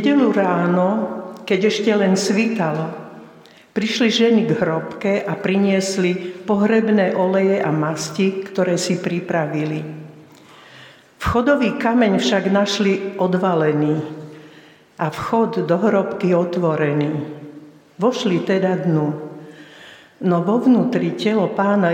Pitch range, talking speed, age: 165-200 Hz, 100 wpm, 60-79